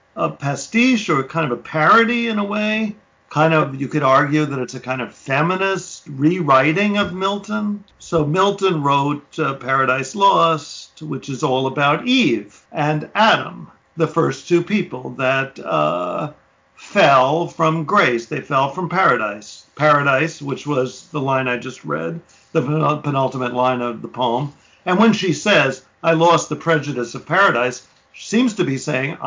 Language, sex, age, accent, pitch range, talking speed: English, male, 50-69, American, 145-205 Hz, 160 wpm